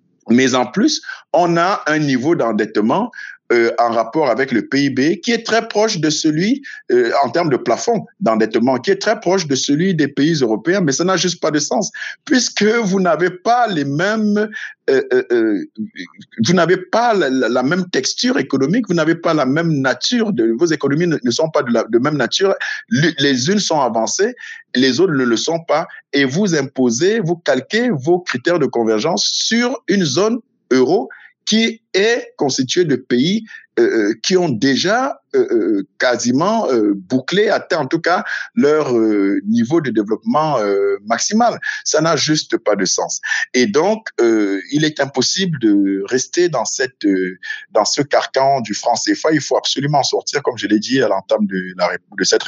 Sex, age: male, 50-69